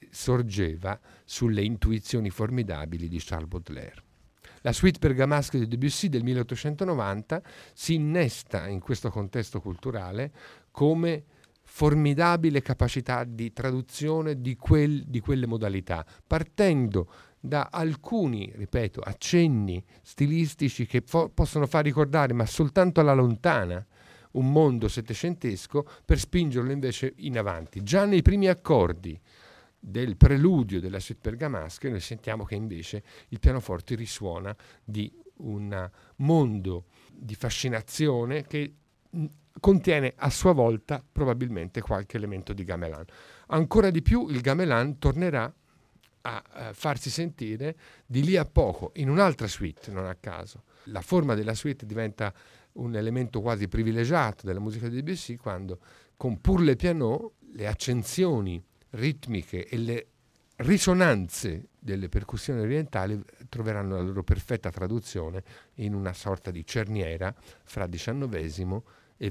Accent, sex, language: native, male, Italian